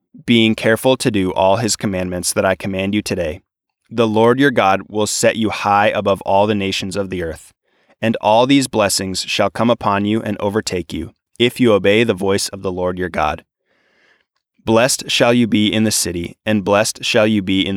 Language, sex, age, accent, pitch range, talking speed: English, male, 20-39, American, 95-115 Hz, 205 wpm